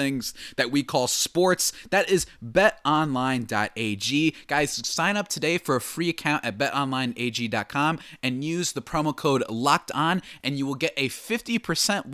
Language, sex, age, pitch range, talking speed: English, male, 20-39, 120-185 Hz, 150 wpm